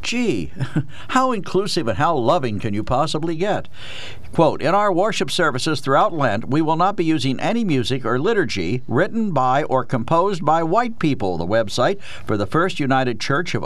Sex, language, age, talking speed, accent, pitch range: male, English, 60-79, 180 wpm, American, 120-165 Hz